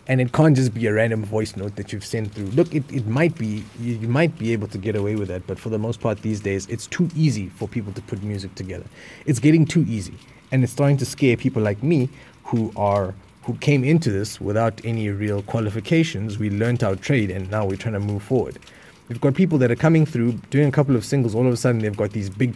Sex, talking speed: male, 255 wpm